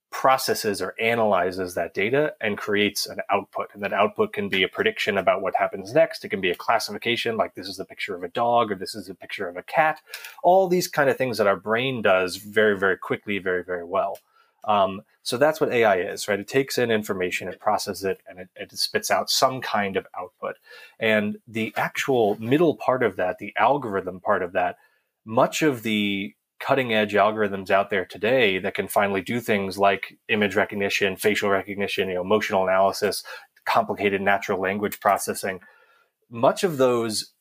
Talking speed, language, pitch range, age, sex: 190 wpm, English, 100-120 Hz, 30-49, male